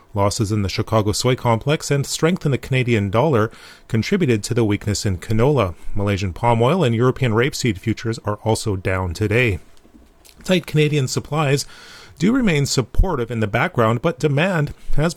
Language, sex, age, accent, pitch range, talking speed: English, male, 30-49, American, 105-145 Hz, 160 wpm